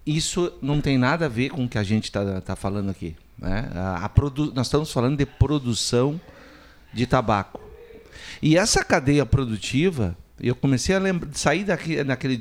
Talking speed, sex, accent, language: 175 wpm, male, Brazilian, Portuguese